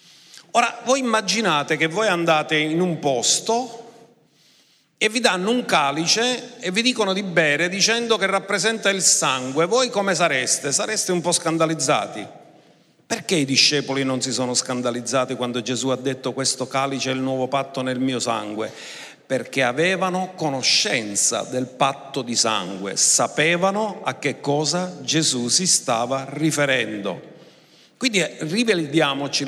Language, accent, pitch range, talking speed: Italian, native, 130-175 Hz, 140 wpm